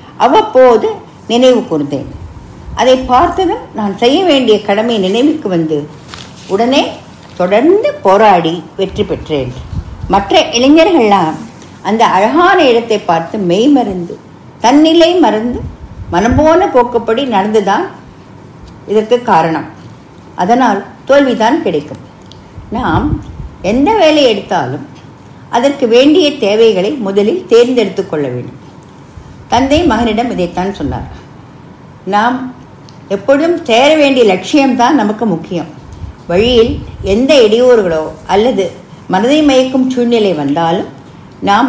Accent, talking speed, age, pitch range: Indian, 90 wpm, 50-69, 175-265 Hz